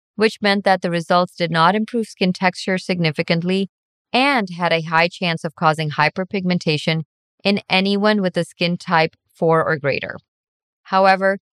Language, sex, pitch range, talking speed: English, female, 155-190 Hz, 150 wpm